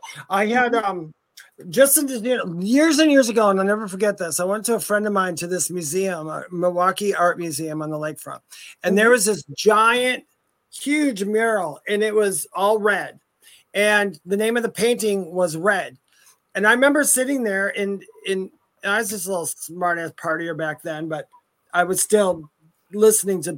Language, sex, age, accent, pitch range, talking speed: English, male, 30-49, American, 175-215 Hz, 180 wpm